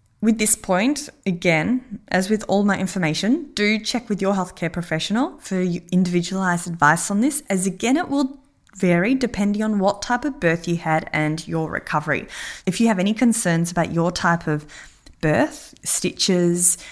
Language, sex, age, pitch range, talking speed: English, female, 10-29, 180-250 Hz, 165 wpm